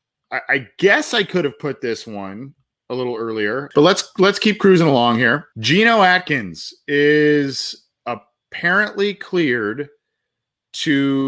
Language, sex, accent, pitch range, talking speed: English, male, American, 110-140 Hz, 130 wpm